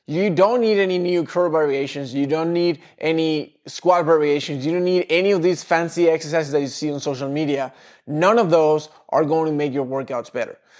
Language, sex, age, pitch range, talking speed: English, male, 20-39, 150-190 Hz, 205 wpm